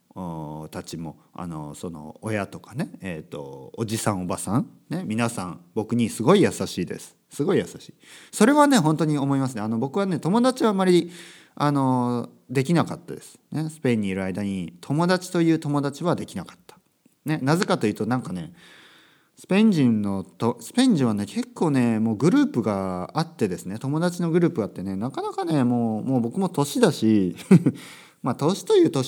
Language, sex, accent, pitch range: Japanese, male, native, 100-165 Hz